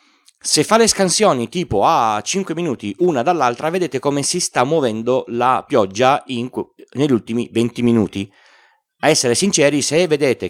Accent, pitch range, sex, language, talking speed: native, 105-145 Hz, male, Italian, 150 wpm